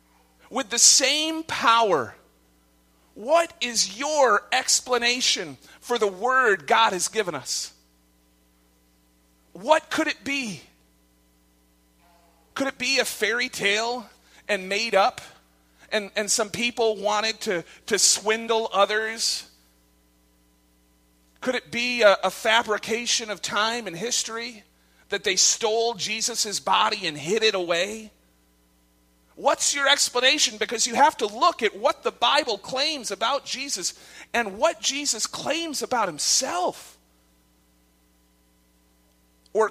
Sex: male